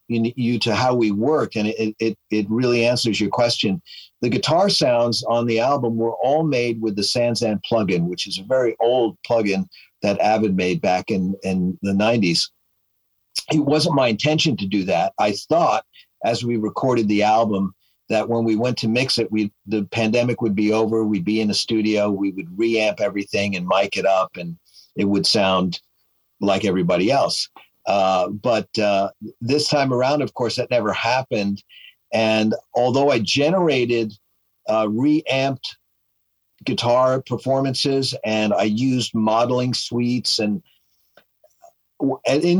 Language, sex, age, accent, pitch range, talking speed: Portuguese, male, 50-69, American, 105-125 Hz, 160 wpm